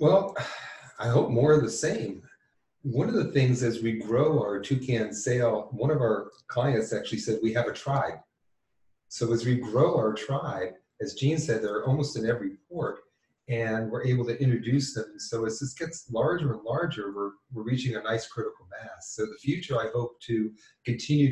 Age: 40-59